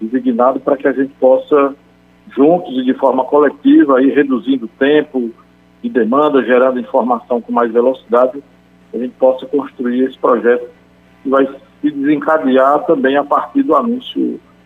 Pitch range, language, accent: 115-145 Hz, Portuguese, Brazilian